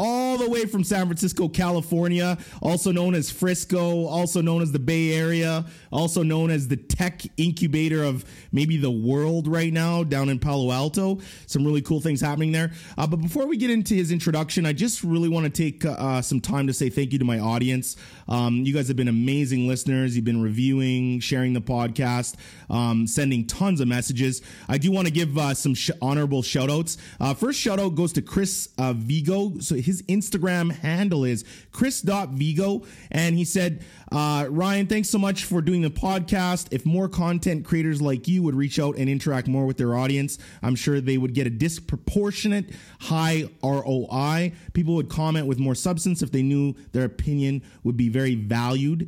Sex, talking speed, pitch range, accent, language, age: male, 195 wpm, 130-175 Hz, American, English, 30-49